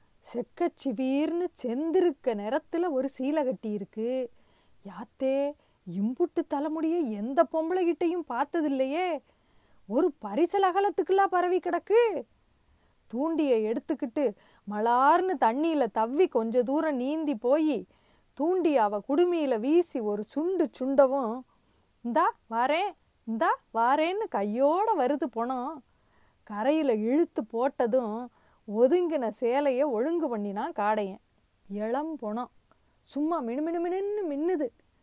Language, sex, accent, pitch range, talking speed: Tamil, female, native, 220-310 Hz, 95 wpm